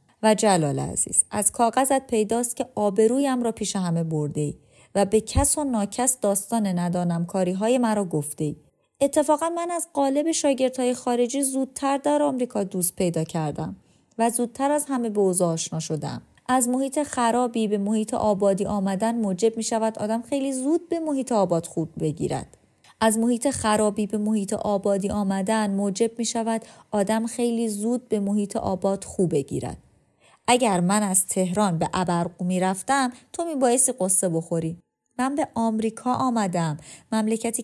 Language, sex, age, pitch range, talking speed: Persian, female, 30-49, 185-250 Hz, 155 wpm